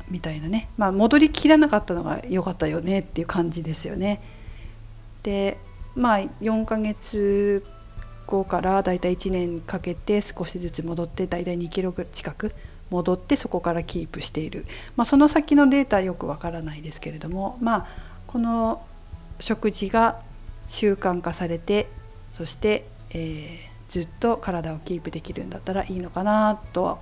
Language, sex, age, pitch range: Japanese, female, 50-69, 160-210 Hz